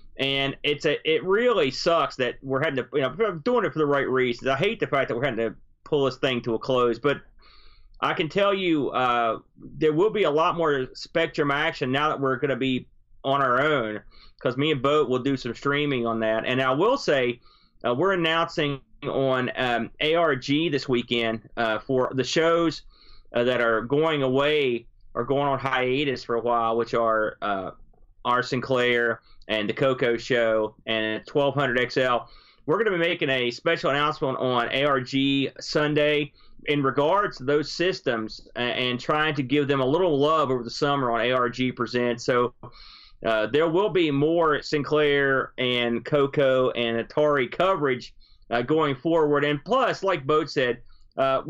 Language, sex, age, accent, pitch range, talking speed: English, male, 30-49, American, 120-155 Hz, 180 wpm